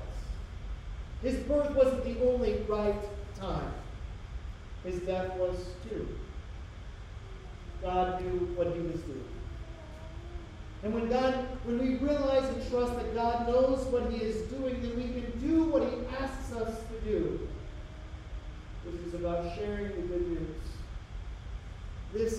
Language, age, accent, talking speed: English, 40-59, American, 135 wpm